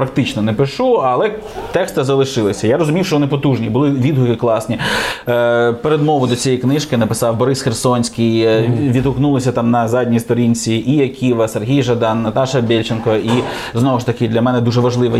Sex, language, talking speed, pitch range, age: male, Ukrainian, 160 wpm, 115-135 Hz, 20-39